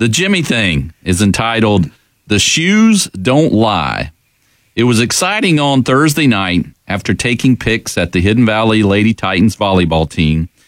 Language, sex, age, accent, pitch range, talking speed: English, male, 40-59, American, 90-125 Hz, 145 wpm